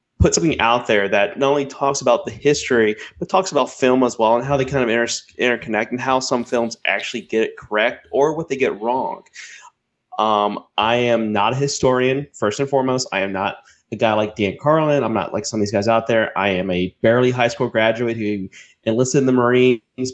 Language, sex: English, male